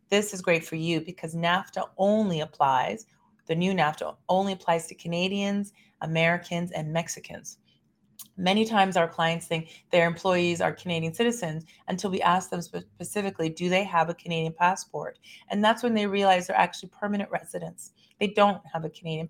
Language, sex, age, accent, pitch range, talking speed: English, female, 30-49, American, 165-195 Hz, 170 wpm